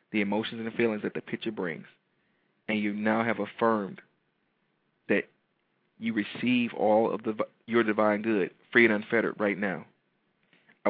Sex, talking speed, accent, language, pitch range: male, 155 wpm, American, English, 105-120 Hz